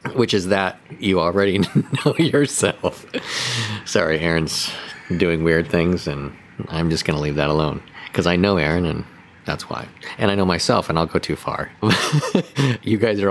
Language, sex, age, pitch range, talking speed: English, male, 40-59, 85-110 Hz, 175 wpm